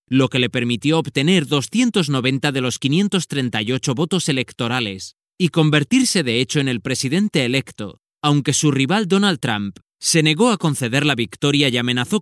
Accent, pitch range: Spanish, 120-155 Hz